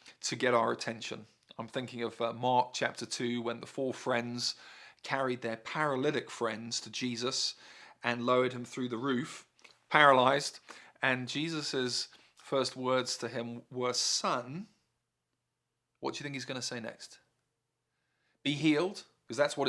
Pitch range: 115-135 Hz